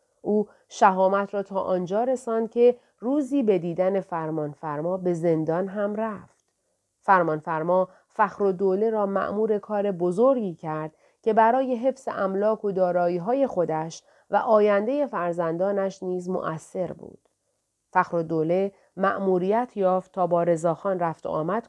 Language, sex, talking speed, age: Persian, female, 135 wpm, 40-59